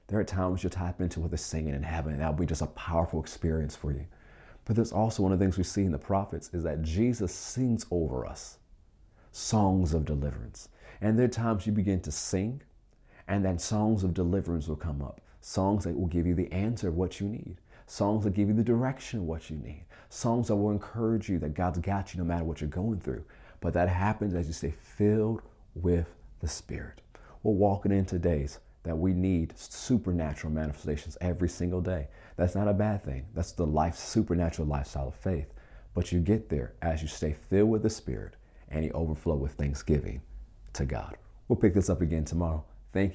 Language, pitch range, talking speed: English, 80-100 Hz, 210 wpm